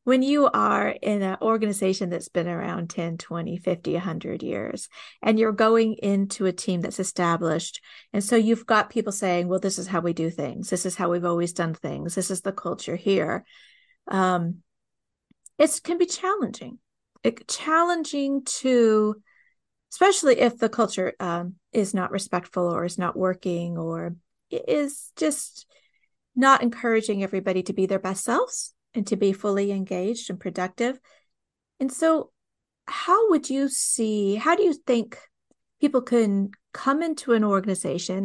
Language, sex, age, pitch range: English, female, 40-59, 185-265 Hz